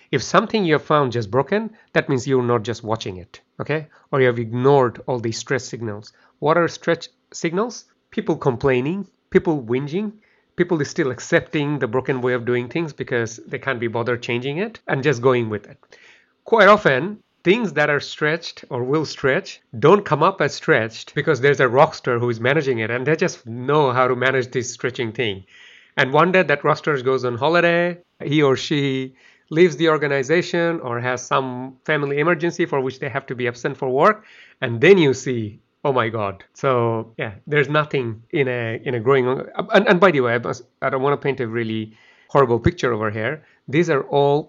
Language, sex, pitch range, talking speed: English, male, 120-160 Hz, 200 wpm